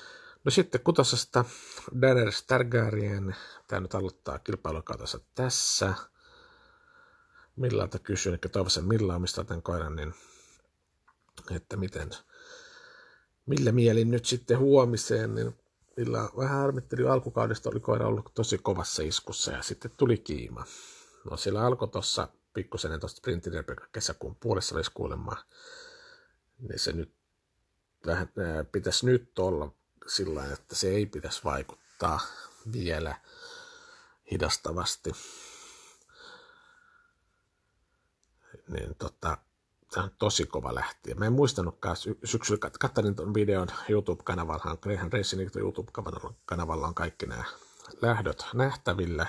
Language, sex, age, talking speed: Finnish, male, 50-69, 110 wpm